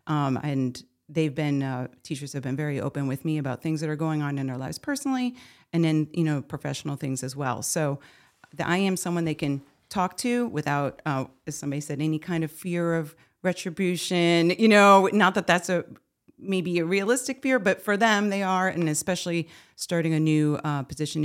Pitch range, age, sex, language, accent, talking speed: 145-180 Hz, 40-59, female, English, American, 205 wpm